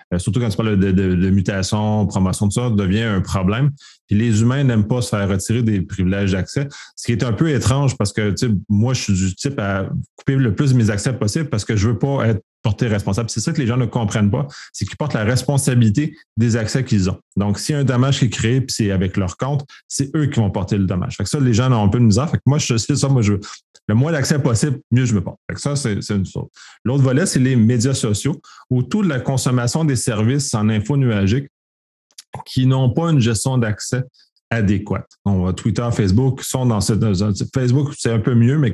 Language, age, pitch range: French, 30-49, 105-135 Hz